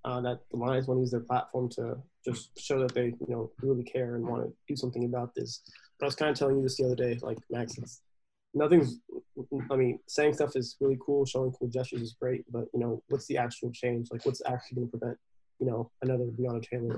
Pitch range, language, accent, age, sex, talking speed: 120-130 Hz, English, American, 20-39, male, 245 wpm